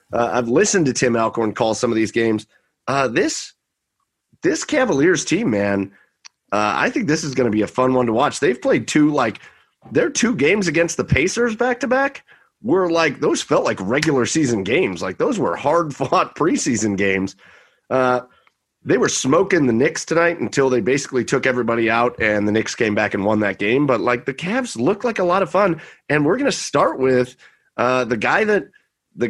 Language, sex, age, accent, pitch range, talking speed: English, male, 30-49, American, 110-165 Hz, 200 wpm